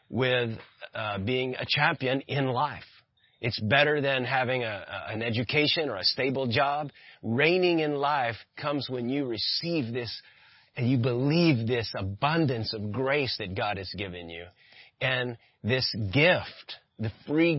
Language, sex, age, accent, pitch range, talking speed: English, male, 30-49, American, 115-150 Hz, 150 wpm